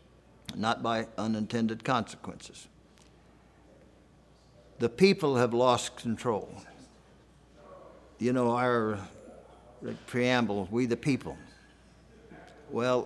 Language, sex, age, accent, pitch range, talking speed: English, male, 60-79, American, 90-125 Hz, 80 wpm